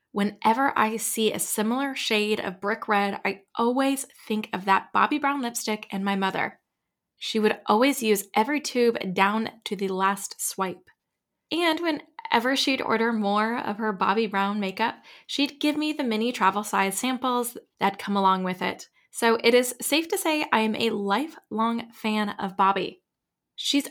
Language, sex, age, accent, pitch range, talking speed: English, female, 20-39, American, 205-255 Hz, 170 wpm